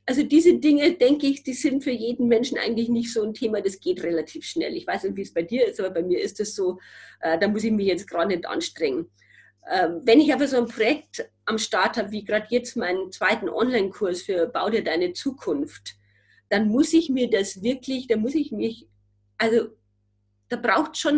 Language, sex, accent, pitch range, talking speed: German, female, German, 210-295 Hz, 220 wpm